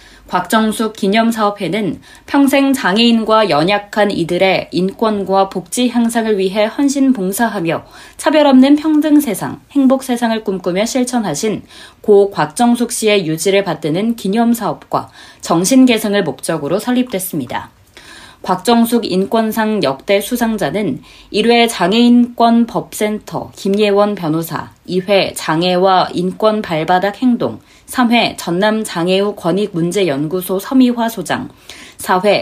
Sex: female